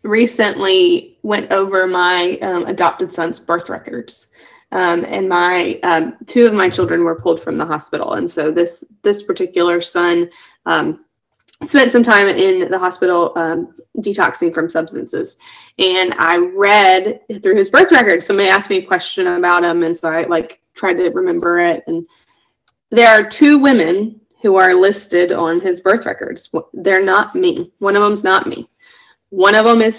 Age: 20-39